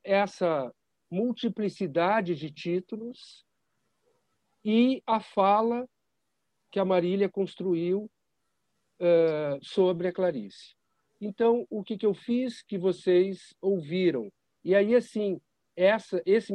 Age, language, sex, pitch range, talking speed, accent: 60-79, Portuguese, male, 170-210 Hz, 100 wpm, Brazilian